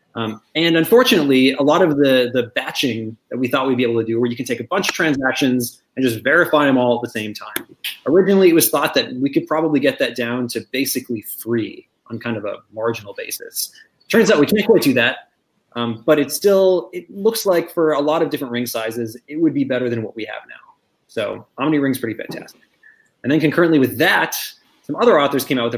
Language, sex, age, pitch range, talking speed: English, male, 20-39, 120-165 Hz, 230 wpm